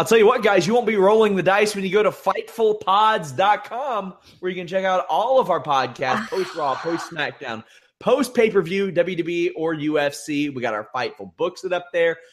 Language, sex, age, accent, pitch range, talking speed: English, male, 30-49, American, 130-180 Hz, 185 wpm